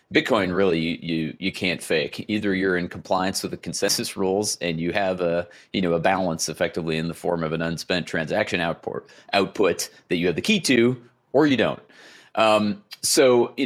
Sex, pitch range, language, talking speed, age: male, 85-105 Hz, English, 195 wpm, 30-49